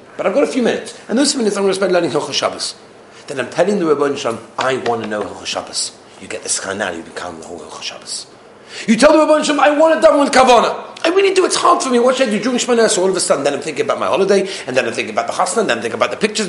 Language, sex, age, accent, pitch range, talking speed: English, male, 40-59, British, 190-305 Hz, 315 wpm